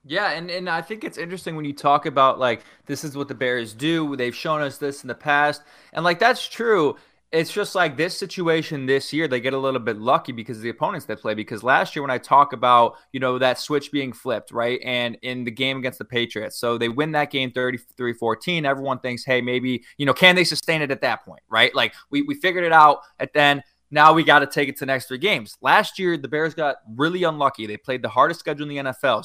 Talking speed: 250 wpm